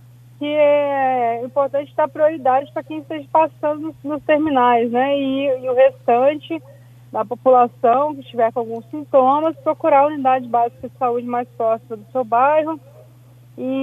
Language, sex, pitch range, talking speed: Portuguese, female, 245-295 Hz, 150 wpm